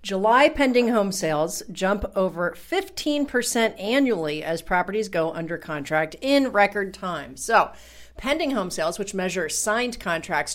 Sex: female